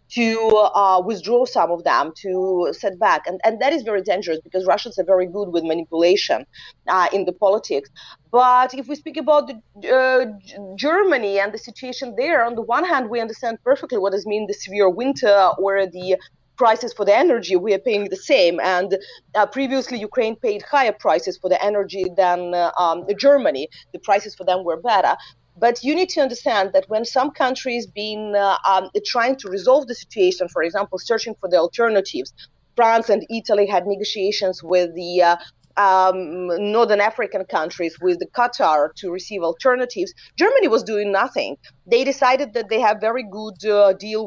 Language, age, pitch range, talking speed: English, 30-49, 185-245 Hz, 185 wpm